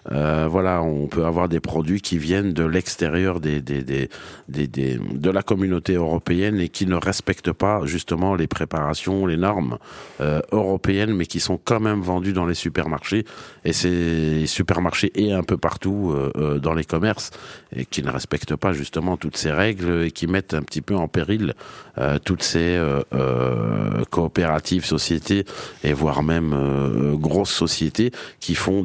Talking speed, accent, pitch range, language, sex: 175 wpm, French, 75-95 Hz, French, male